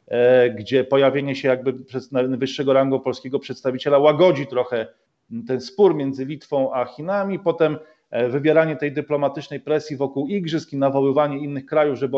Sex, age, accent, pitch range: male, 40-59, native, 135-175 Hz